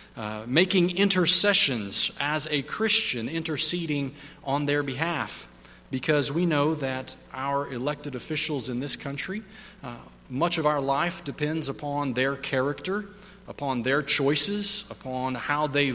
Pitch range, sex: 130-165 Hz, male